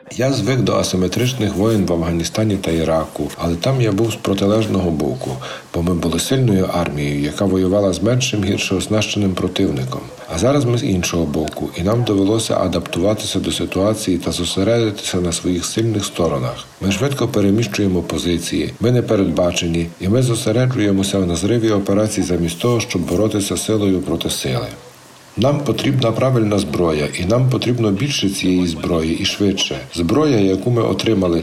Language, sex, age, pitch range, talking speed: Ukrainian, male, 50-69, 90-115 Hz, 155 wpm